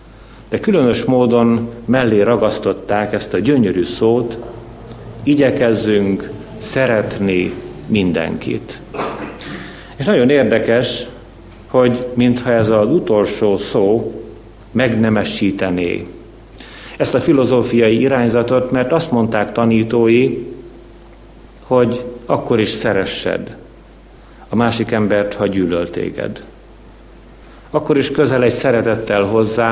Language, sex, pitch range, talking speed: Hungarian, male, 110-125 Hz, 90 wpm